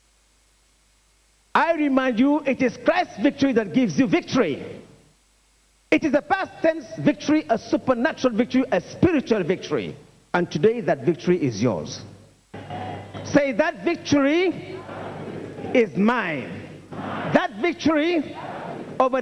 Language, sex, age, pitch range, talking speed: English, male, 50-69, 205-280 Hz, 115 wpm